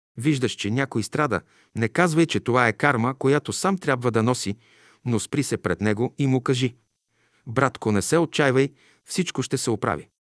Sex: male